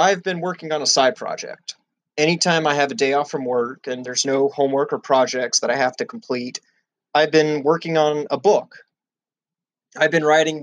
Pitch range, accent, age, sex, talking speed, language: 125-155 Hz, American, 30-49, male, 200 wpm, English